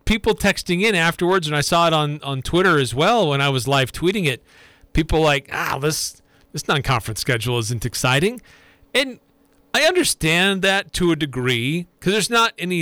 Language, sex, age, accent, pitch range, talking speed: English, male, 40-59, American, 130-180 Hz, 185 wpm